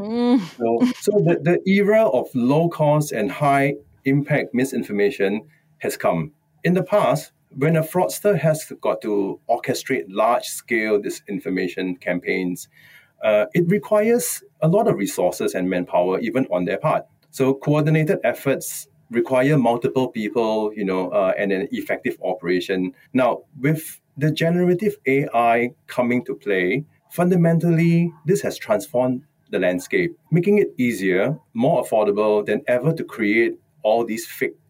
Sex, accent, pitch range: male, Malaysian, 110-170 Hz